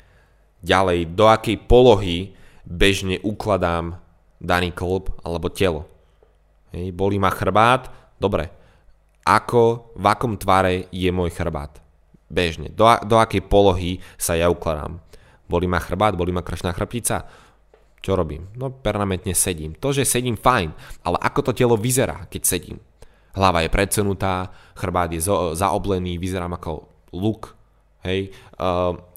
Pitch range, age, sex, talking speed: 85-105 Hz, 20-39, male, 130 wpm